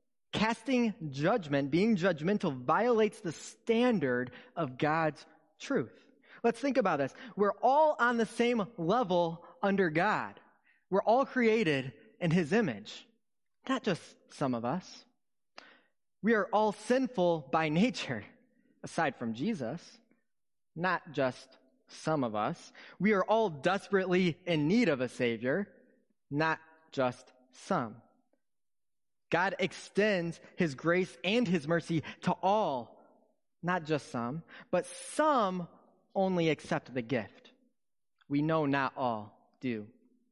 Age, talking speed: 20-39, 120 wpm